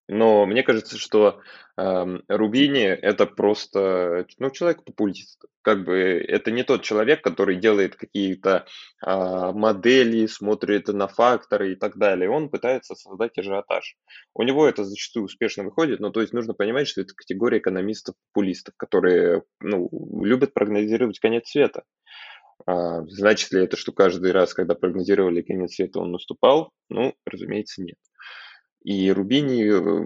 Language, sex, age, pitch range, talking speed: Russian, male, 20-39, 95-110 Hz, 130 wpm